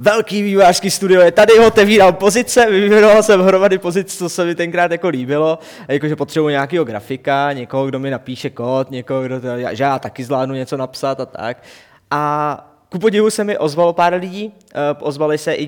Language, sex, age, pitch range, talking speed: Czech, male, 20-39, 130-150 Hz, 190 wpm